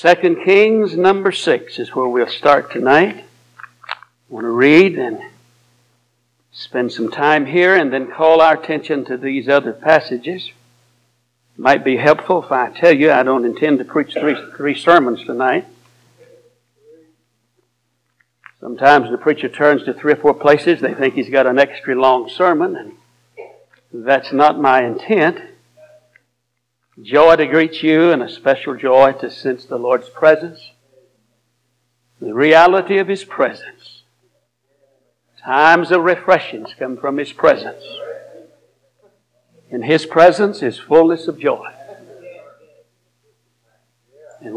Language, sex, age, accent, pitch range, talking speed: English, male, 60-79, American, 120-160 Hz, 135 wpm